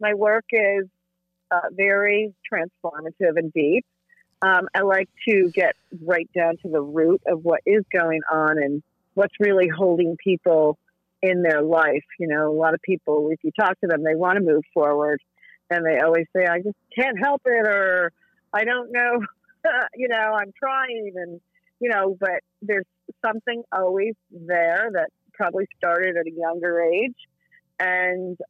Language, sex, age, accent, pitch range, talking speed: English, female, 40-59, American, 165-200 Hz, 170 wpm